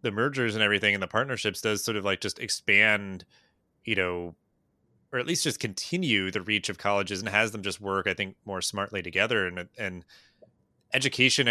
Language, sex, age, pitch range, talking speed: English, male, 20-39, 95-115 Hz, 195 wpm